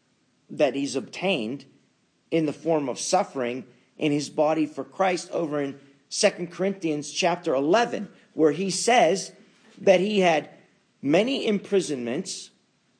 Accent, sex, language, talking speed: American, male, English, 125 wpm